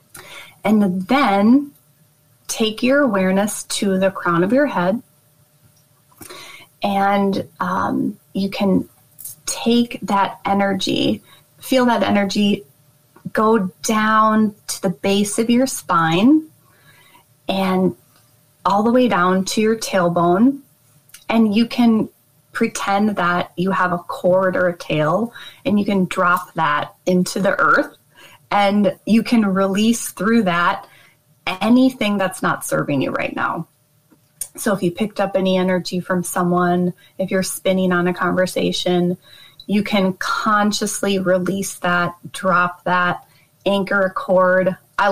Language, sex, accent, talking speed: English, female, American, 130 wpm